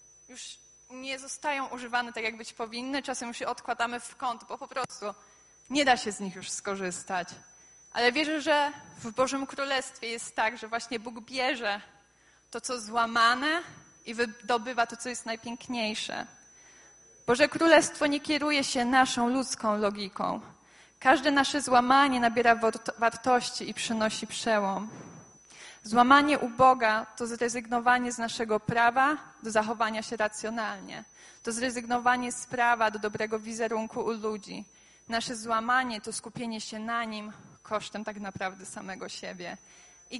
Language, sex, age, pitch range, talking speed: Polish, female, 20-39, 220-260 Hz, 140 wpm